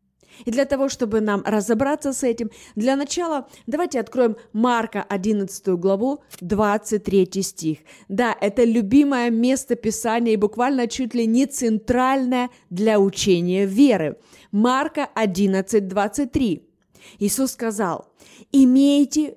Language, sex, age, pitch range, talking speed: Russian, female, 20-39, 200-270 Hz, 115 wpm